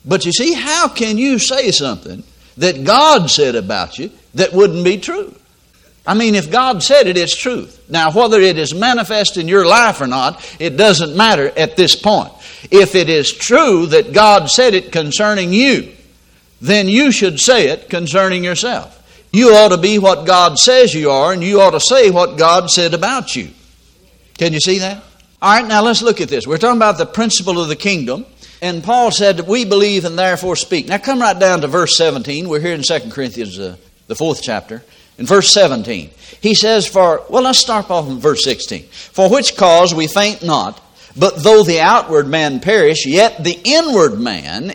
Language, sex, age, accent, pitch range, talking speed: English, male, 60-79, American, 170-230 Hz, 200 wpm